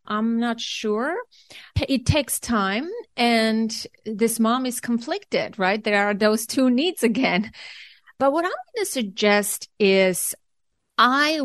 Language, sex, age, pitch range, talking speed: English, female, 30-49, 200-245 Hz, 135 wpm